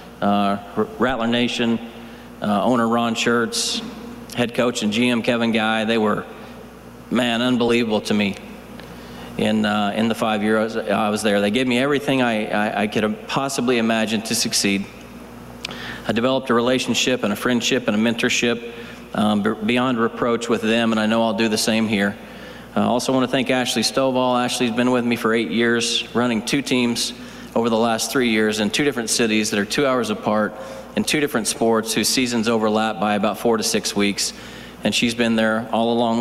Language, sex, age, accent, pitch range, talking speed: English, male, 40-59, American, 110-125 Hz, 185 wpm